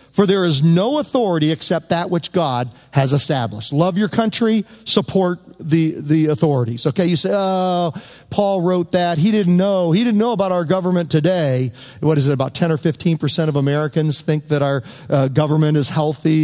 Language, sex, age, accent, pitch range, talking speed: English, male, 40-59, American, 155-220 Hz, 190 wpm